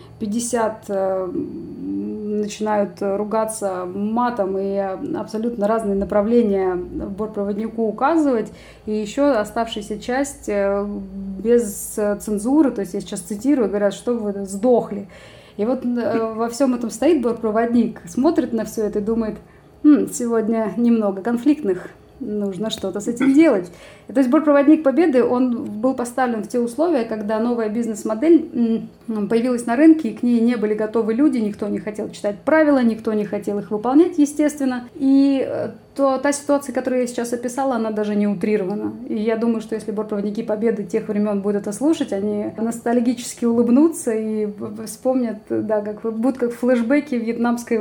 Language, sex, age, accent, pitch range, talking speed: Russian, female, 20-39, native, 210-255 Hz, 145 wpm